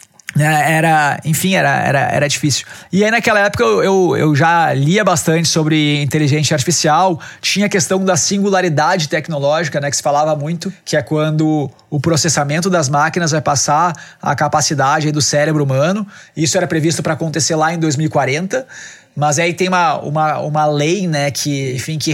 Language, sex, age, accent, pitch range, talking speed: Portuguese, male, 20-39, Brazilian, 150-180 Hz, 170 wpm